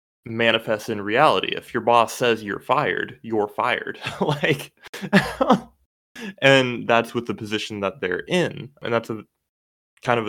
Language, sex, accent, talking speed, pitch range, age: English, male, American, 145 wpm, 100-120 Hz, 20-39